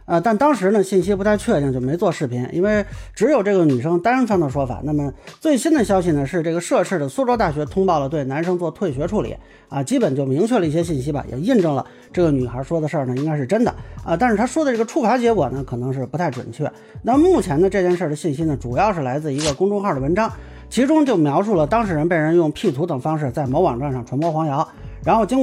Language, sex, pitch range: Chinese, male, 140-210 Hz